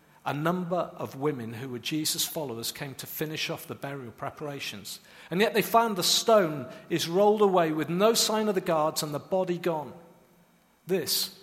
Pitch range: 175-225 Hz